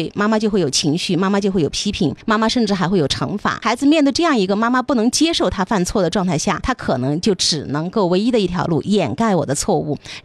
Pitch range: 180-250 Hz